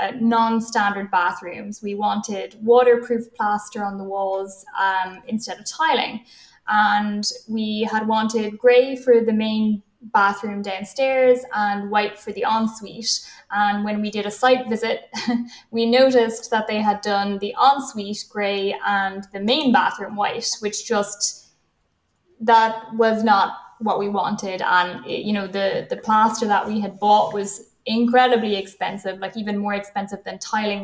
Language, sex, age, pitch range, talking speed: English, female, 10-29, 200-230 Hz, 150 wpm